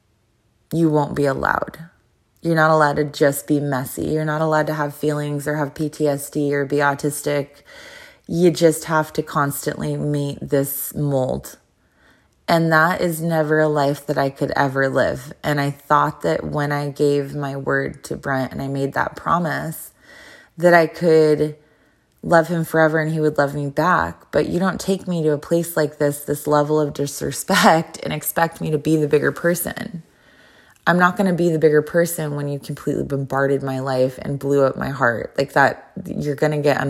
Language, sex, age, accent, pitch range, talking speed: English, female, 20-39, American, 135-155 Hz, 190 wpm